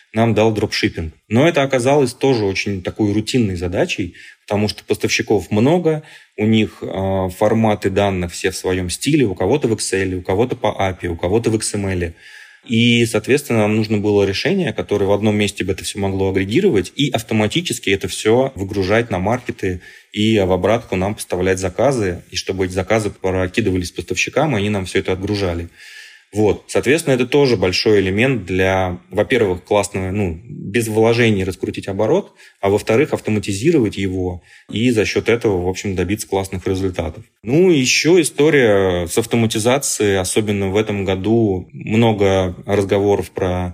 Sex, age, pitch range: male, 20-39, 95-110 Hz